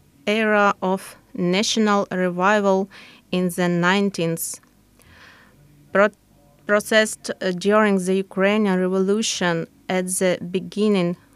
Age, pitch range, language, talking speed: 30-49, 180-210 Hz, English, 80 wpm